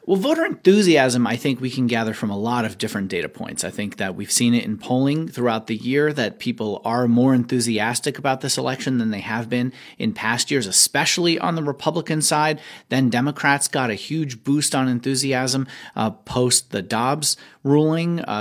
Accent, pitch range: American, 120-155 Hz